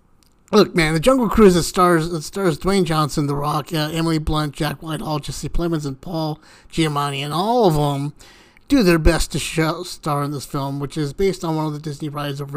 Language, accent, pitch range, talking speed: English, American, 145-185 Hz, 215 wpm